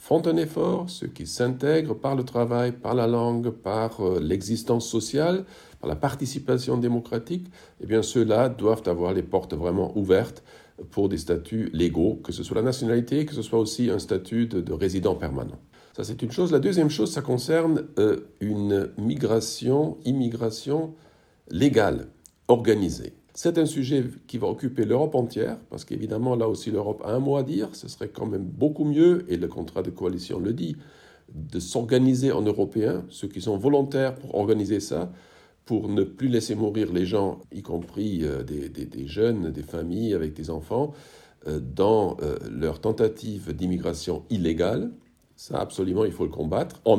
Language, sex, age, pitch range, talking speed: French, male, 50-69, 90-125 Hz, 170 wpm